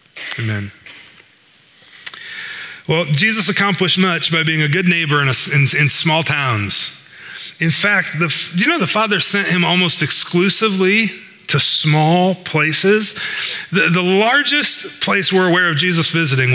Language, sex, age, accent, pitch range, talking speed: English, male, 30-49, American, 155-195 Hz, 140 wpm